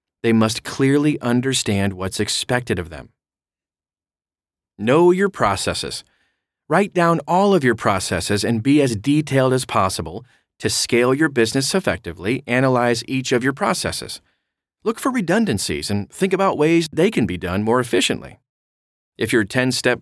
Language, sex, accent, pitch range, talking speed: English, male, American, 100-135 Hz, 145 wpm